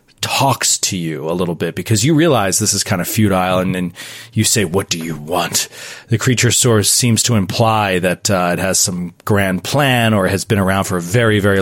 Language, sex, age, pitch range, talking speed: English, male, 30-49, 95-120 Hz, 220 wpm